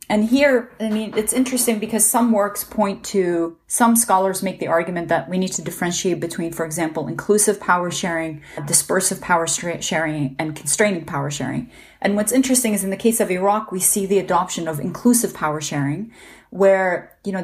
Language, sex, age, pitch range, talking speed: English, female, 30-49, 170-210 Hz, 185 wpm